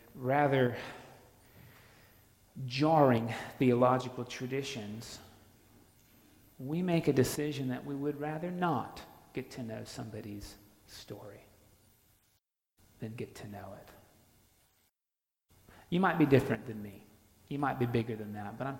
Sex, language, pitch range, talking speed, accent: male, English, 110-135 Hz, 120 wpm, American